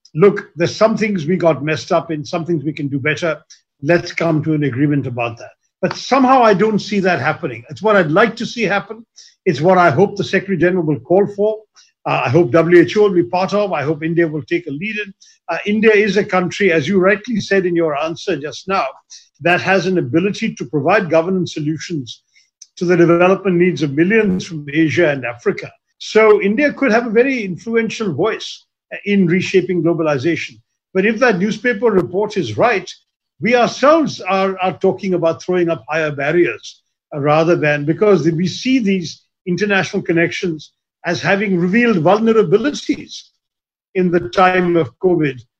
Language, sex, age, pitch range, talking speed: Hindi, male, 50-69, 165-210 Hz, 185 wpm